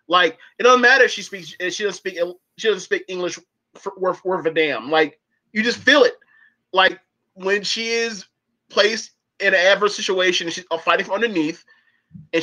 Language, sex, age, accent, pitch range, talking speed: English, male, 20-39, American, 160-215 Hz, 190 wpm